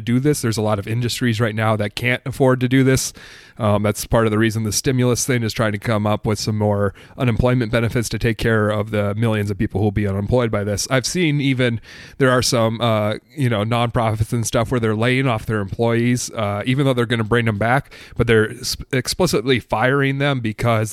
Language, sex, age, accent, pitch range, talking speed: English, male, 30-49, American, 110-125 Hz, 235 wpm